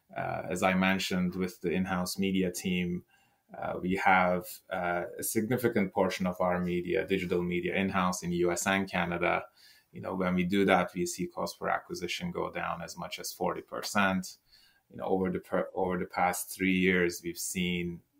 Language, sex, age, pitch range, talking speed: English, male, 20-39, 90-95 Hz, 190 wpm